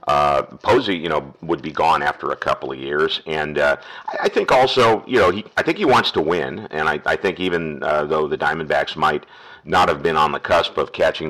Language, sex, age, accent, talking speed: English, male, 50-69, American, 240 wpm